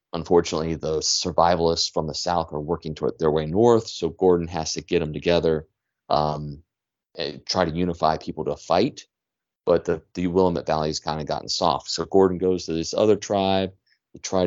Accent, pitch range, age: American, 80-95 Hz, 30-49